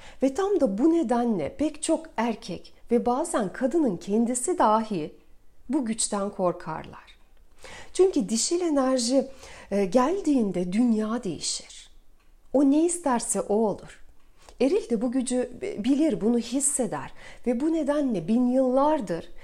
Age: 40-59